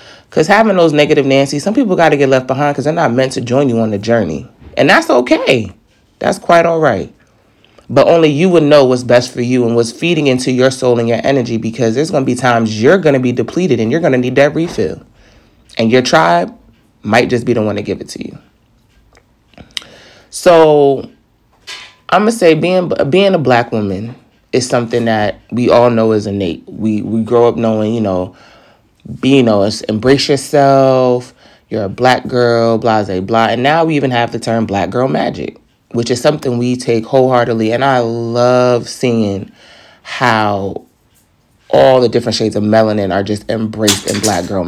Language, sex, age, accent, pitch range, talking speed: English, male, 20-39, American, 110-135 Hz, 195 wpm